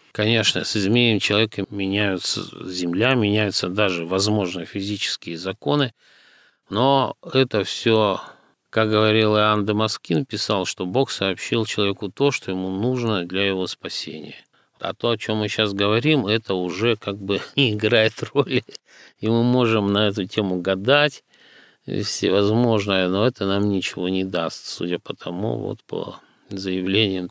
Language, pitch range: Russian, 95-115 Hz